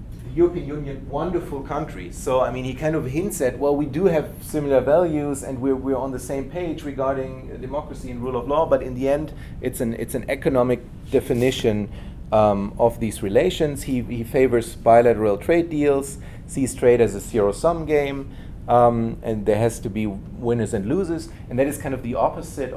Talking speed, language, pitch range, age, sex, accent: 200 wpm, English, 105-135 Hz, 30-49, male, German